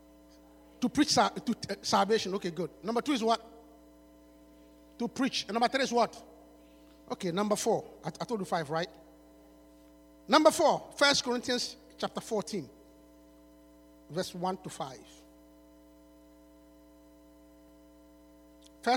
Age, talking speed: 50-69, 125 wpm